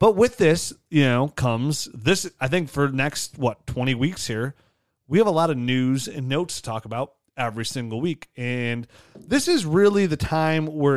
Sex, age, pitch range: male, 30-49, 120-150 Hz